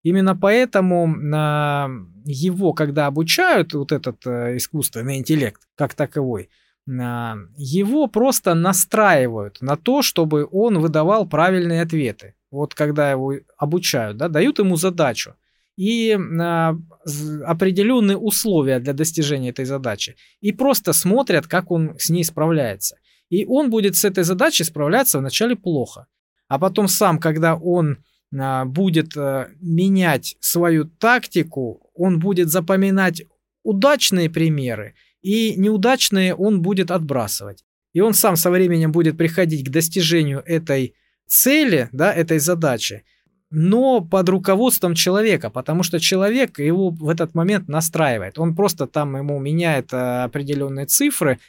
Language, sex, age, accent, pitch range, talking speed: Russian, male, 20-39, native, 140-190 Hz, 120 wpm